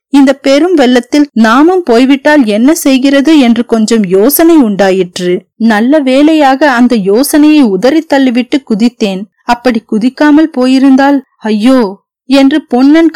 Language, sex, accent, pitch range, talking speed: Tamil, female, native, 220-290 Hz, 110 wpm